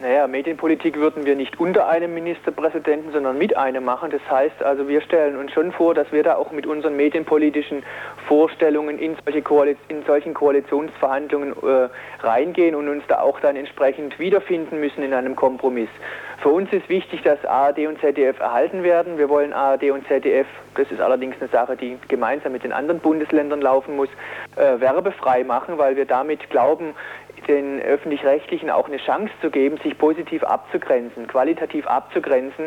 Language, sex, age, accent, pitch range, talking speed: German, male, 40-59, German, 135-155 Hz, 175 wpm